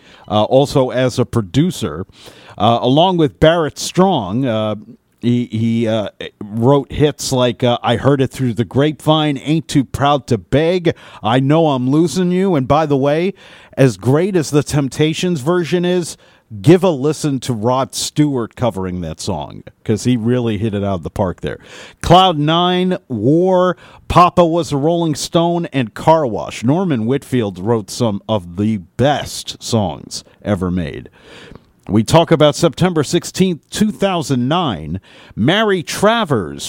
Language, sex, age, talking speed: English, male, 50-69, 150 wpm